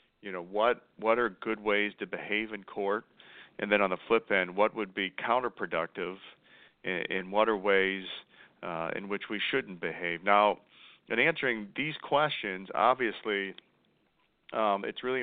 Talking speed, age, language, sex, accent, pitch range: 160 wpm, 40-59, English, male, American, 95-105 Hz